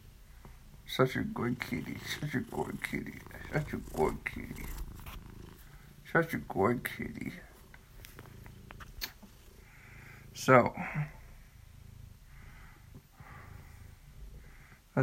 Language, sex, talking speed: English, male, 45 wpm